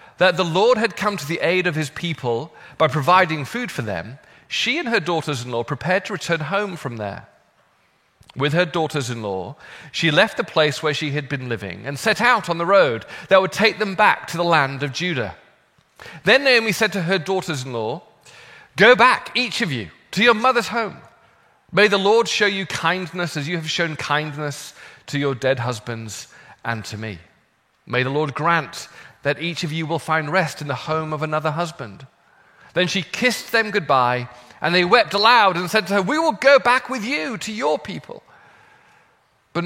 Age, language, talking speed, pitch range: 40-59, English, 190 wpm, 145-210 Hz